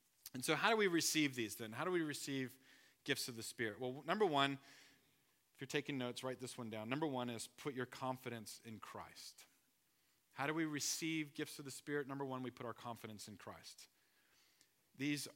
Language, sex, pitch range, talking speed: English, male, 110-130 Hz, 205 wpm